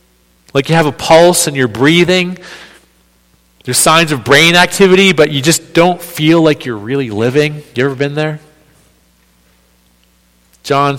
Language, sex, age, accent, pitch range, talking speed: English, male, 40-59, American, 105-170 Hz, 145 wpm